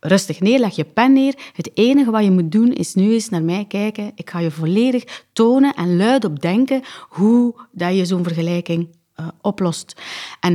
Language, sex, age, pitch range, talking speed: Dutch, female, 30-49, 175-235 Hz, 190 wpm